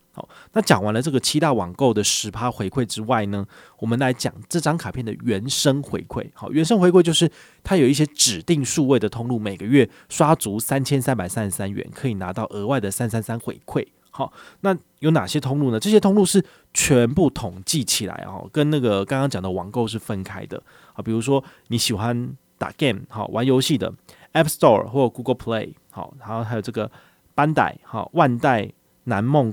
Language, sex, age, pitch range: Chinese, male, 20-39, 105-140 Hz